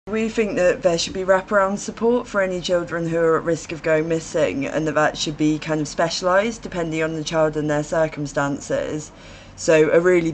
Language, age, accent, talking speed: English, 20-39, British, 210 wpm